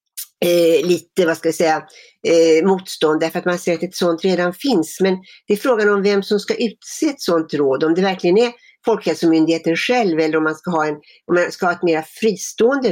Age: 60-79